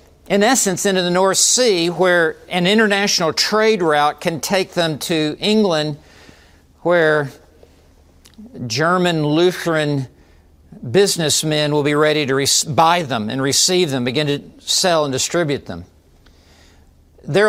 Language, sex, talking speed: English, male, 125 wpm